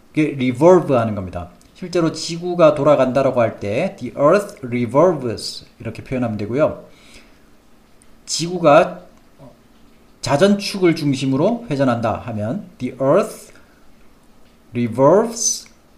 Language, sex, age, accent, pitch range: Korean, male, 40-59, native, 115-165 Hz